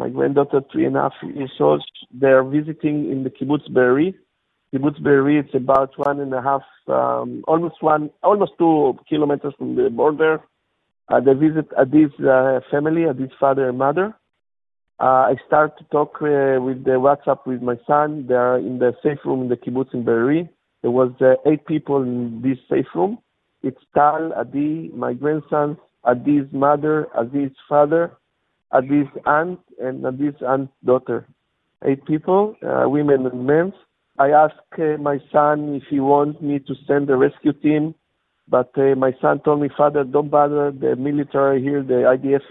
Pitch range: 130-150 Hz